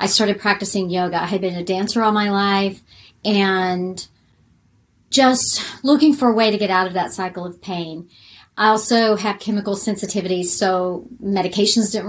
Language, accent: English, American